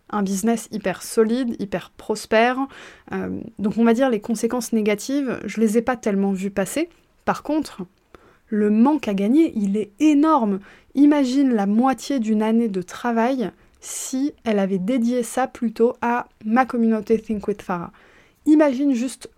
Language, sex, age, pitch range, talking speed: French, female, 20-39, 210-260 Hz, 160 wpm